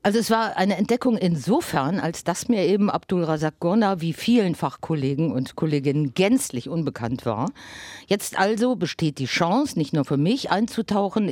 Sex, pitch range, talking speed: female, 150-210 Hz, 160 wpm